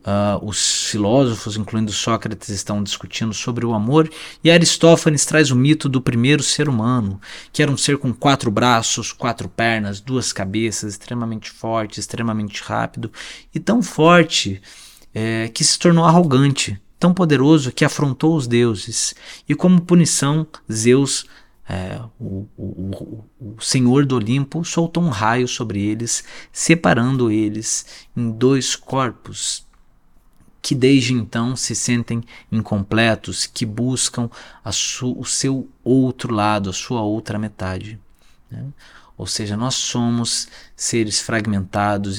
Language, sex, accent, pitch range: Portuguese, male, Brazilian, 105-130 Hz